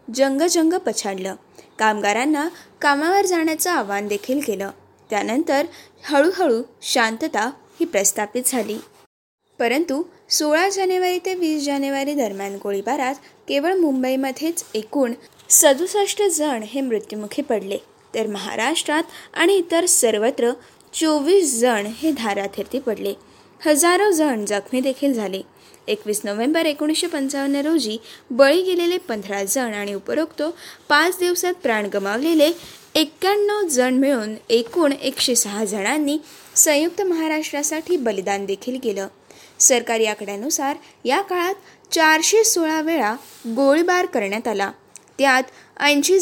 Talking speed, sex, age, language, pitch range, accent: 105 wpm, female, 20-39, Marathi, 220-330 Hz, native